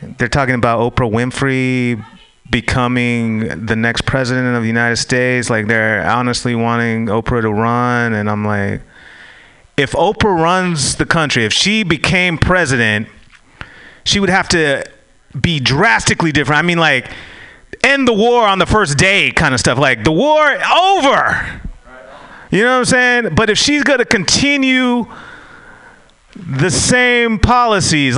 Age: 30-49